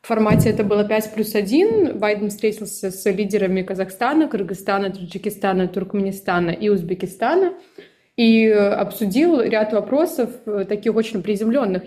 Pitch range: 200-235 Hz